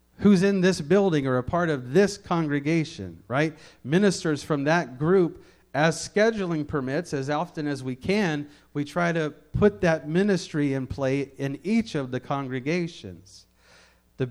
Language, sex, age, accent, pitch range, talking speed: English, male, 40-59, American, 125-170 Hz, 155 wpm